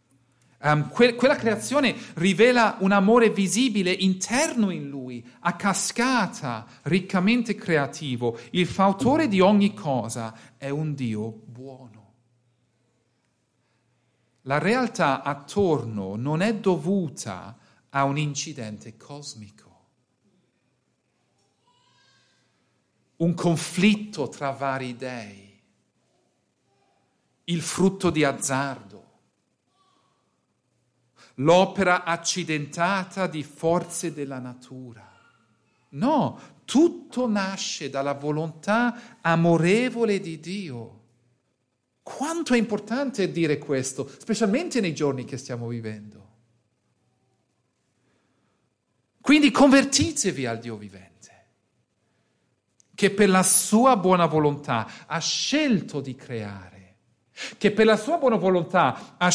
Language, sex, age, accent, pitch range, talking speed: Italian, male, 50-69, native, 125-200 Hz, 90 wpm